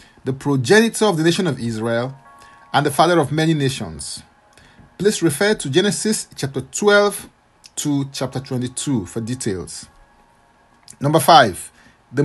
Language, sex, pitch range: English, male, 130-185 Hz